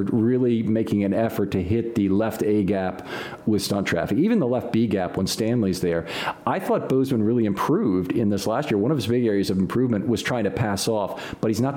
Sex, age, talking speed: male, 40-59, 230 wpm